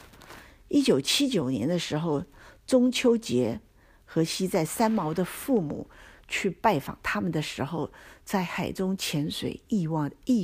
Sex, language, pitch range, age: female, Chinese, 145-190 Hz, 50-69